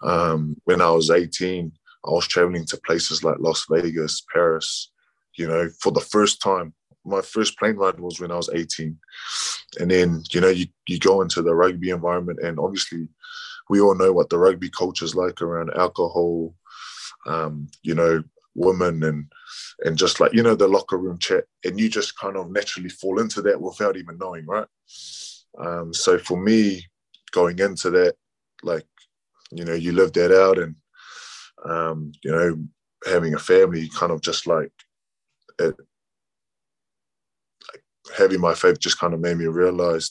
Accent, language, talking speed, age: British, English, 170 wpm, 20-39